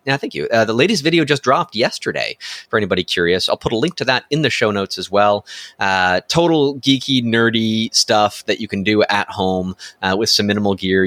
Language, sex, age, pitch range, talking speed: English, male, 30-49, 105-140 Hz, 220 wpm